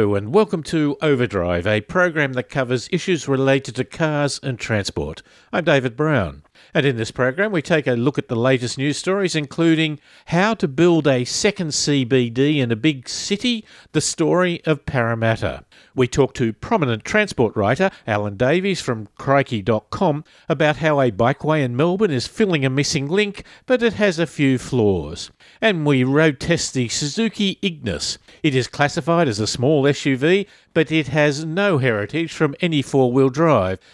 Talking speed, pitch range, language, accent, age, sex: 170 wpm, 125-170 Hz, English, Australian, 50-69, male